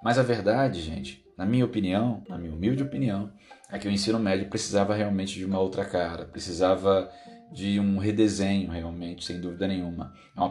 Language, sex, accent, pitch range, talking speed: Portuguese, male, Brazilian, 90-105 Hz, 185 wpm